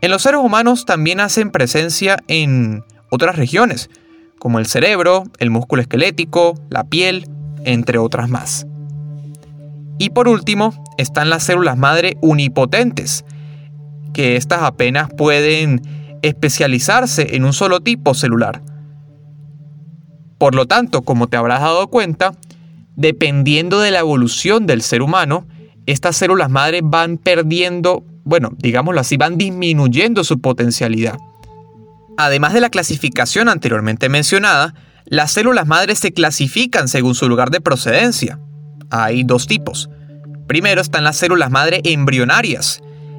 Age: 30-49